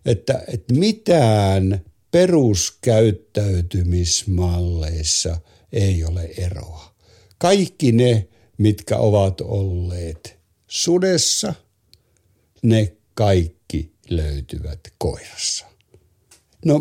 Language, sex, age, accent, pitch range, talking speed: Finnish, male, 60-79, native, 95-130 Hz, 60 wpm